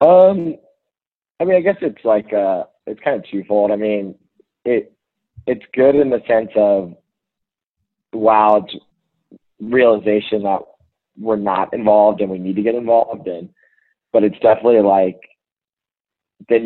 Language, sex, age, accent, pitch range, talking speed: English, male, 30-49, American, 95-125 Hz, 140 wpm